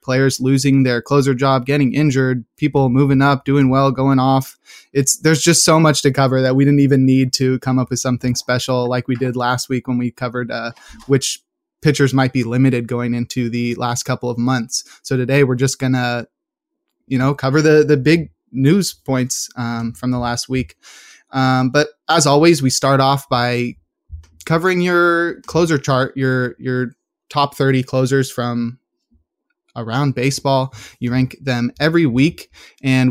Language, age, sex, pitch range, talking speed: English, 20-39, male, 125-140 Hz, 175 wpm